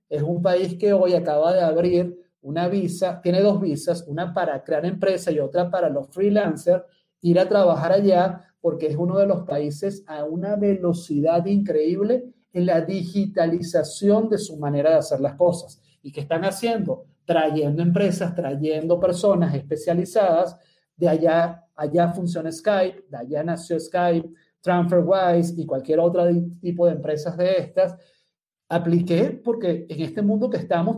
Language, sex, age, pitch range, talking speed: Spanish, male, 40-59, 170-200 Hz, 155 wpm